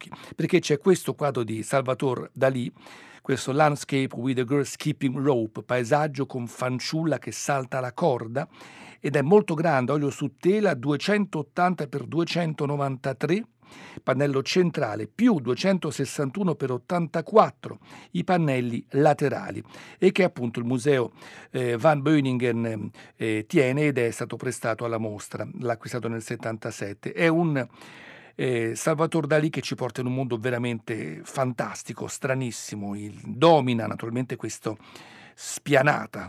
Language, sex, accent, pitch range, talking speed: Italian, male, native, 115-150 Hz, 125 wpm